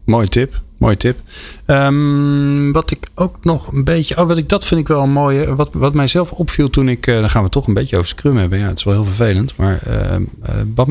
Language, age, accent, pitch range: Dutch, 40-59, Dutch, 95-120 Hz